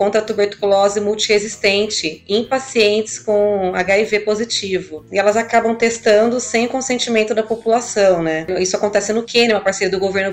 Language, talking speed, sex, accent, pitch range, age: Portuguese, 150 wpm, female, Brazilian, 185-215 Hz, 20-39